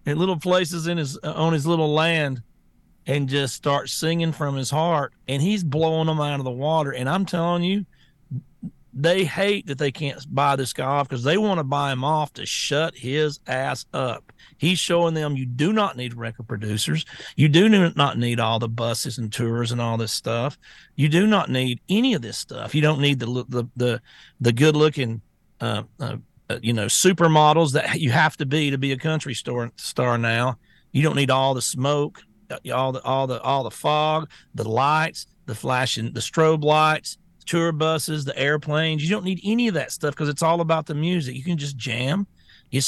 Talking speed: 210 wpm